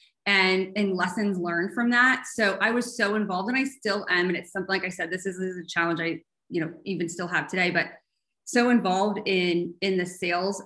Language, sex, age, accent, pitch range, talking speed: English, female, 20-39, American, 180-210 Hz, 230 wpm